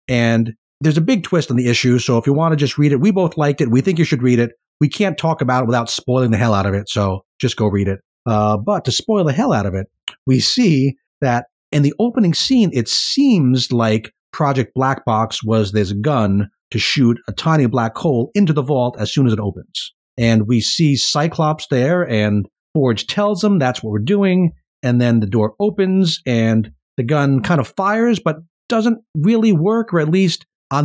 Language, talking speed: English, 220 wpm